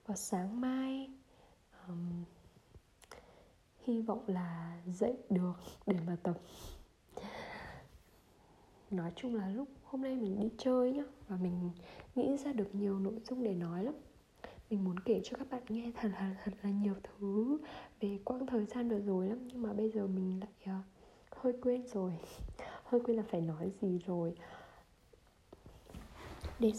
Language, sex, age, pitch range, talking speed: Vietnamese, female, 20-39, 205-250 Hz, 155 wpm